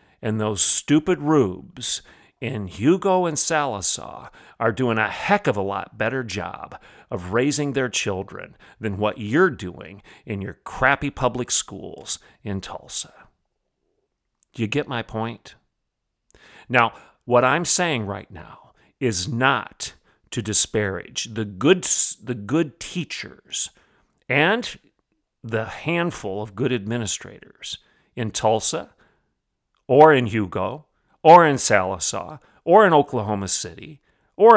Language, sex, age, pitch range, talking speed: English, male, 50-69, 110-150 Hz, 125 wpm